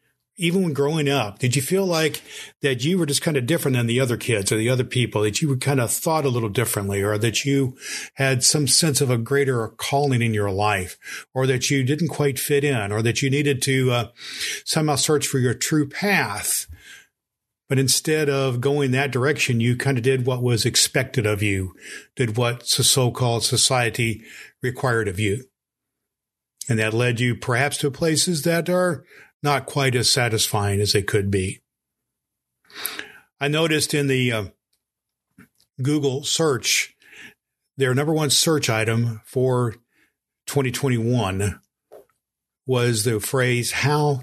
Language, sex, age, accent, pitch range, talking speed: English, male, 50-69, American, 115-145 Hz, 165 wpm